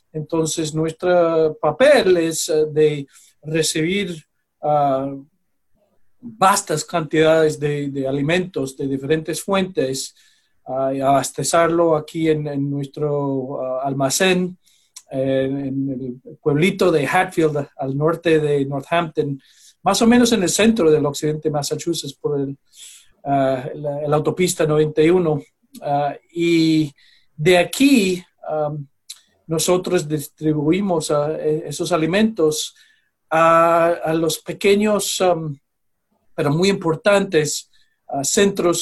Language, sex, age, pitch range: English, male, 40-59, 150-185 Hz